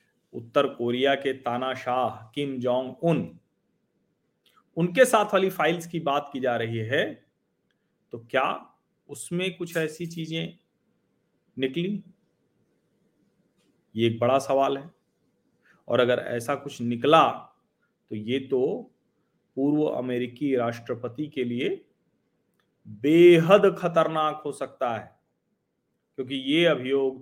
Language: Hindi